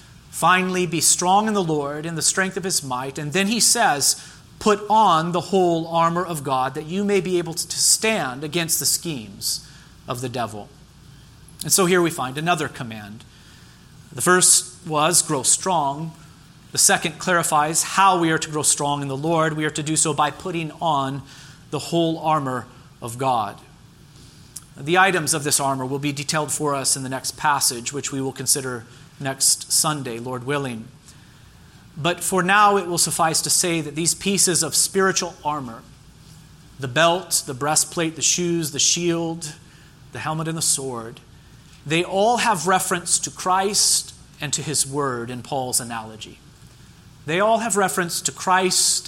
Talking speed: 170 wpm